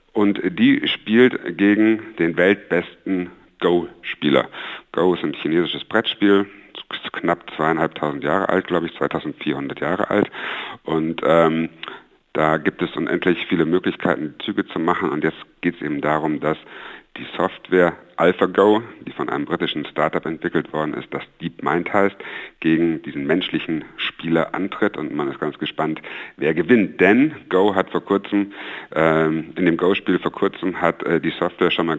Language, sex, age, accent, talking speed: German, male, 60-79, German, 155 wpm